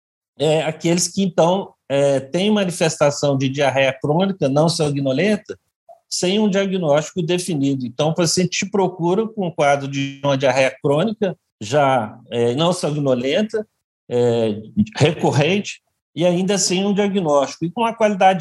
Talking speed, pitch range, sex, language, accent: 145 wpm, 135-185 Hz, male, Portuguese, Brazilian